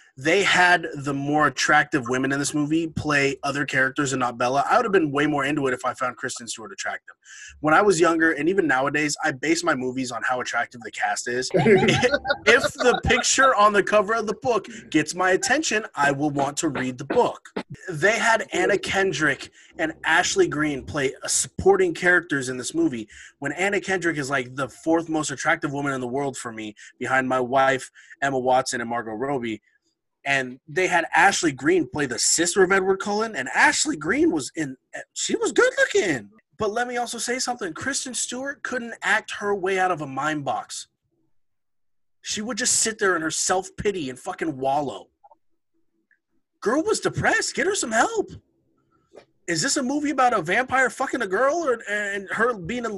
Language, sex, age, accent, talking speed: English, male, 20-39, American, 195 wpm